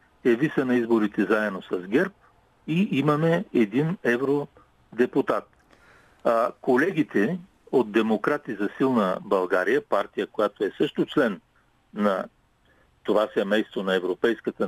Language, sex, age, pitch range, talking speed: Bulgarian, male, 50-69, 125-180 Hz, 105 wpm